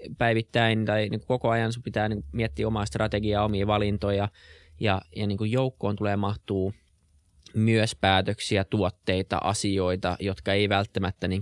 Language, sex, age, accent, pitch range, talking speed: Finnish, male, 20-39, native, 95-110 Hz, 115 wpm